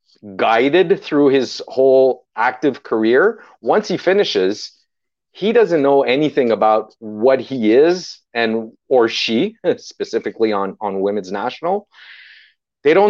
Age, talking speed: 40-59, 125 wpm